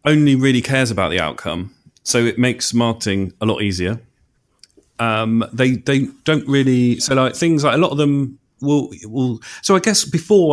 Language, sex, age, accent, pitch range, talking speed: English, male, 40-59, British, 105-130 Hz, 180 wpm